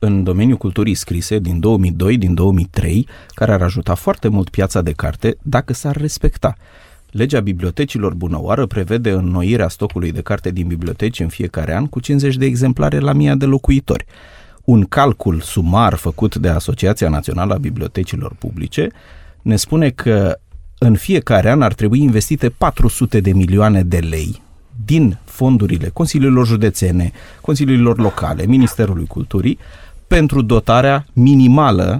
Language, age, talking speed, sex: Romanian, 30-49, 140 wpm, male